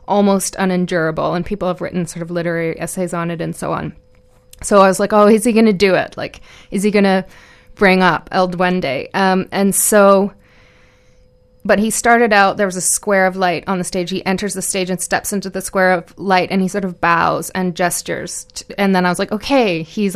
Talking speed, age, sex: 225 wpm, 20-39, female